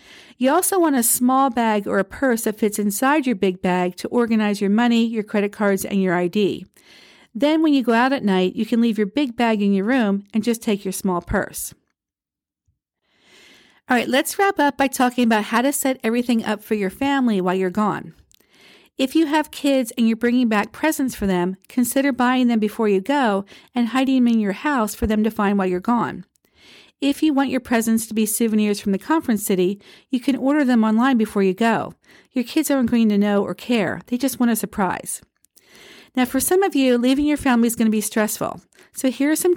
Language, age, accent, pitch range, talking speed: English, 50-69, American, 210-265 Hz, 220 wpm